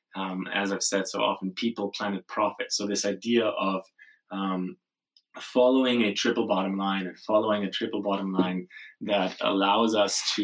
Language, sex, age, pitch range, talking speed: English, male, 20-39, 100-120 Hz, 165 wpm